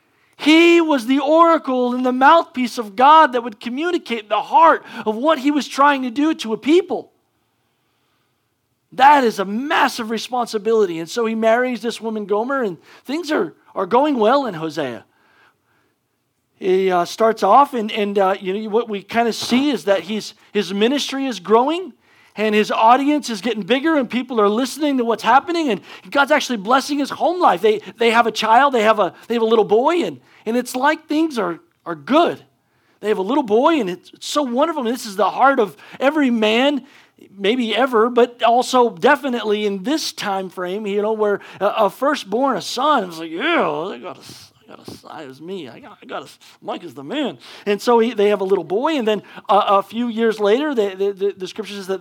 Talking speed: 210 wpm